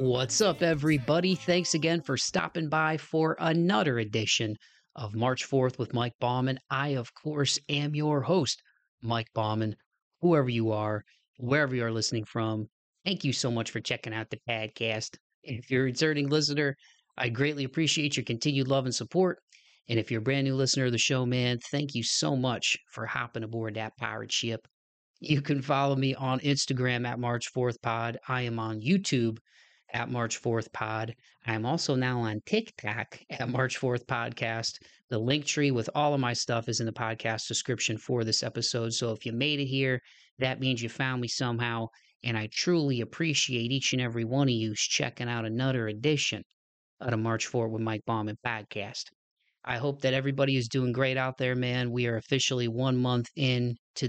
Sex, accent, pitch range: male, American, 115-140 Hz